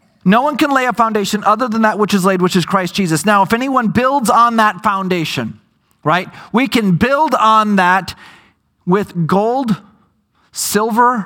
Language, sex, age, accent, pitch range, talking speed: English, male, 40-59, American, 175-220 Hz, 170 wpm